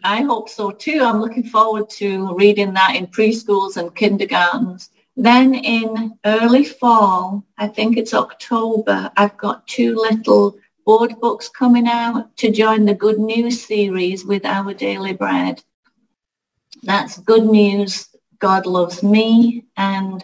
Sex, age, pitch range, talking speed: female, 40-59, 195-225 Hz, 140 wpm